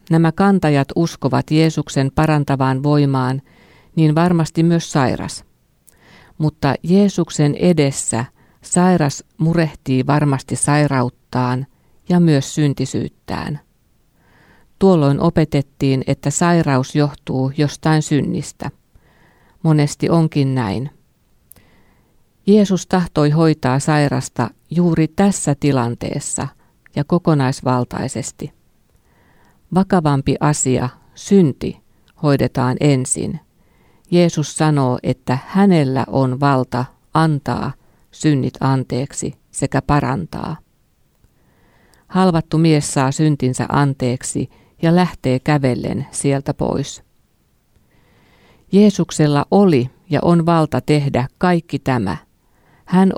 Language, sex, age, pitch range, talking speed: Finnish, female, 50-69, 130-165 Hz, 85 wpm